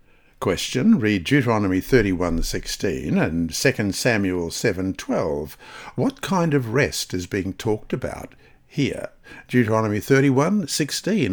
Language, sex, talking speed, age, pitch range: English, male, 100 wpm, 60-79, 100-140 Hz